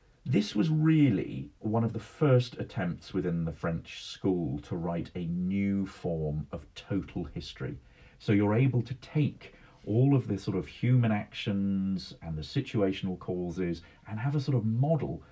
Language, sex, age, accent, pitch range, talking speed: English, male, 40-59, British, 95-125 Hz, 165 wpm